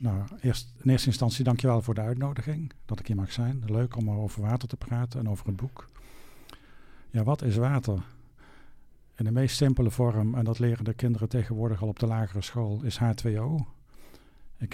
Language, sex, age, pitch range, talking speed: English, male, 50-69, 110-125 Hz, 195 wpm